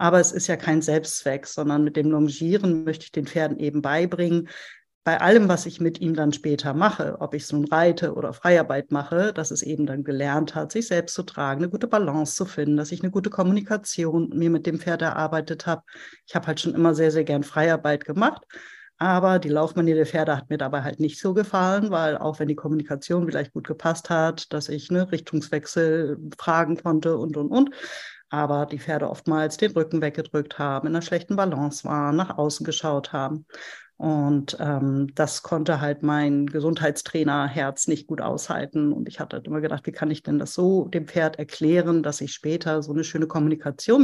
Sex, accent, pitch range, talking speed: female, German, 150-170 Hz, 200 wpm